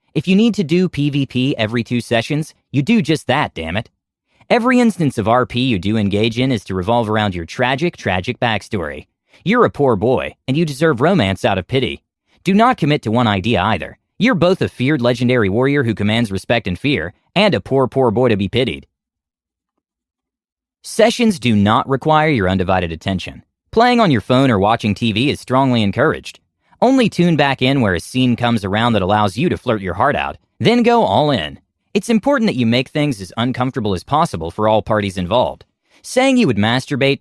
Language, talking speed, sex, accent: English, 200 wpm, male, American